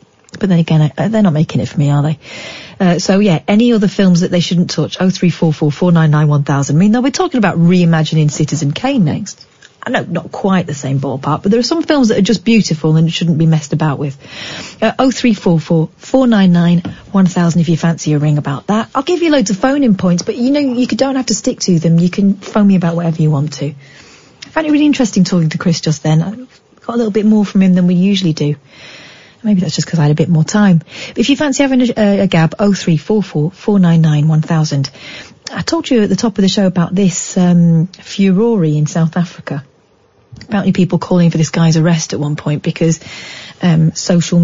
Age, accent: 30-49, British